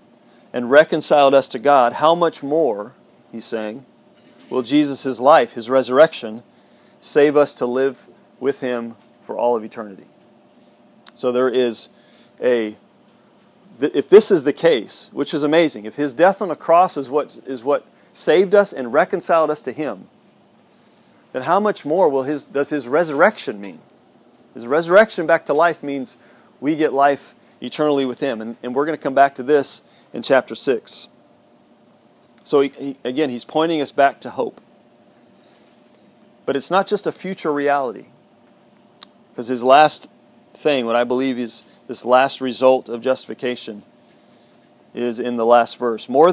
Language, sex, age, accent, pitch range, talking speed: English, male, 40-59, American, 125-155 Hz, 160 wpm